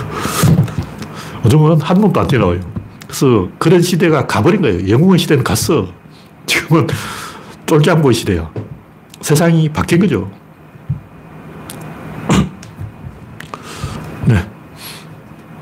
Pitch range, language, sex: 110-150 Hz, Korean, male